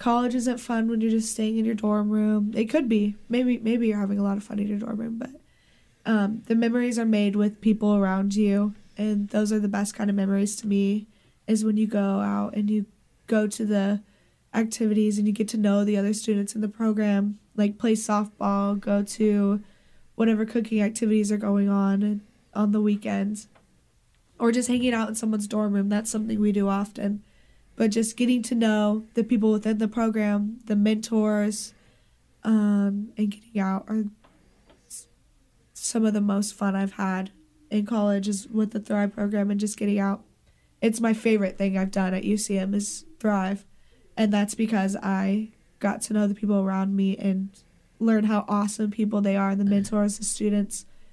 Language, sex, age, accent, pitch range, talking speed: English, female, 10-29, American, 200-220 Hz, 190 wpm